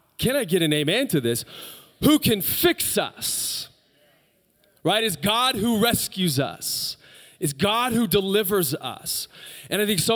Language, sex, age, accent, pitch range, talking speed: English, male, 30-49, American, 120-190 Hz, 155 wpm